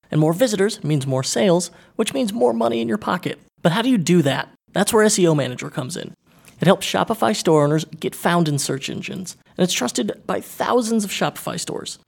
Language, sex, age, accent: English, male, 30-49, American